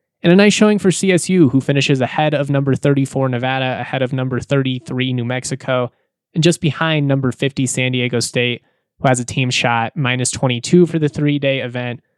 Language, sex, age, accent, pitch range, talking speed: English, male, 20-39, American, 125-150 Hz, 185 wpm